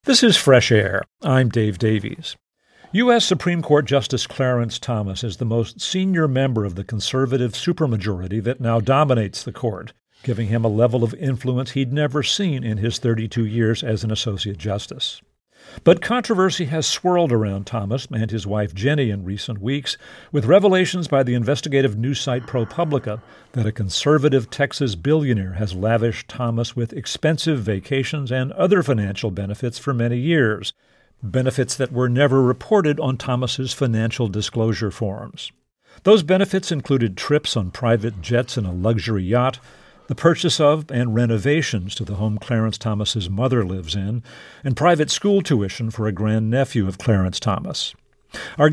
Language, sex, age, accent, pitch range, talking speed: English, male, 50-69, American, 110-145 Hz, 160 wpm